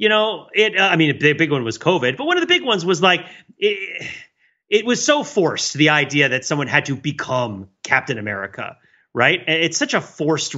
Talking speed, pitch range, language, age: 215 wpm, 125-175 Hz, English, 30-49